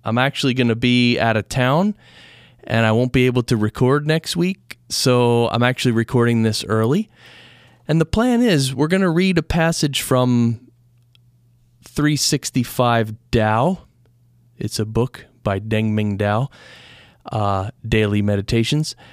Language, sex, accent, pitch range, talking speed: English, male, American, 115-145 Hz, 145 wpm